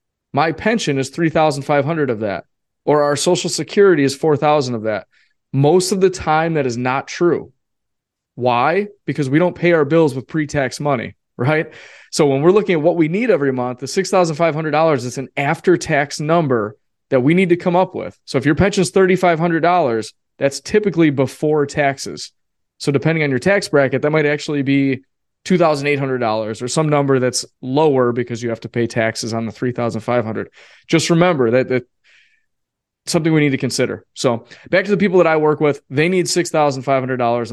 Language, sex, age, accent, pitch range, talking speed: English, male, 20-39, American, 130-165 Hz, 180 wpm